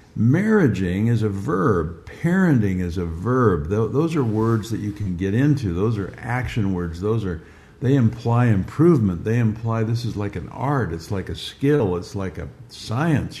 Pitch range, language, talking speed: 90-115 Hz, English, 180 wpm